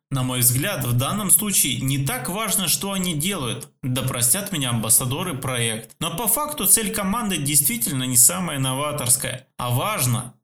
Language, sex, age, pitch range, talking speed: Russian, male, 20-39, 125-165 Hz, 160 wpm